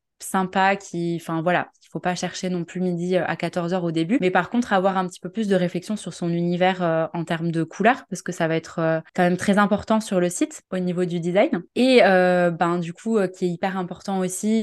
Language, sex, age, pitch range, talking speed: French, female, 20-39, 175-200 Hz, 250 wpm